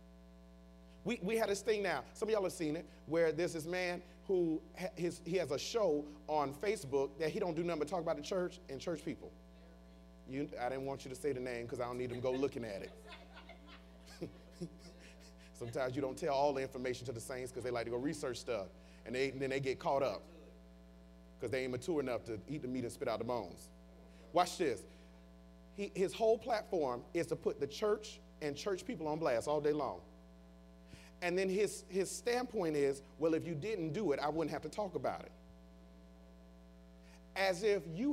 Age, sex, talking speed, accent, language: 30-49, male, 215 wpm, American, English